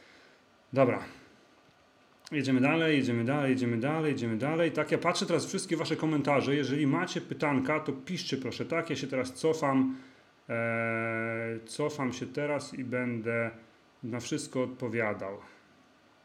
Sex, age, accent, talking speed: male, 30-49, native, 135 wpm